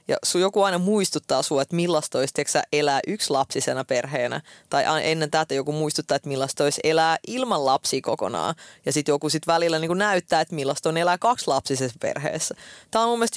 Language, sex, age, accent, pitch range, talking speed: Finnish, female, 20-39, native, 150-200 Hz, 190 wpm